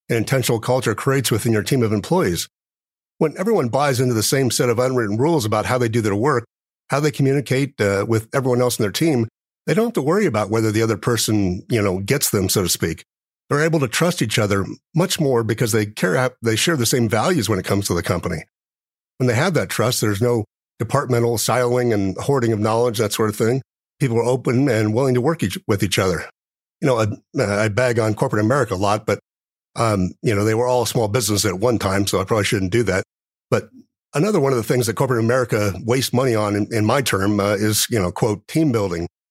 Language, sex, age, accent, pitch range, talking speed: English, male, 50-69, American, 105-125 Hz, 230 wpm